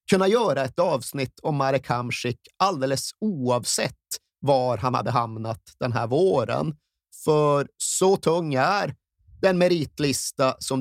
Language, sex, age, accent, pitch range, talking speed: Swedish, male, 30-49, native, 120-155 Hz, 130 wpm